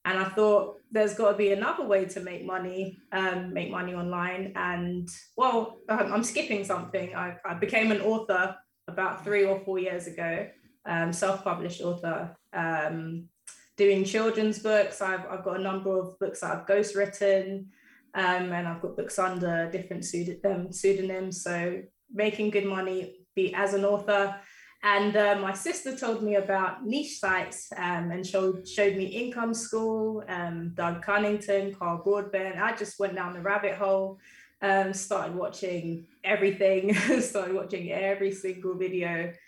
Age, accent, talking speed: 20-39, British, 155 wpm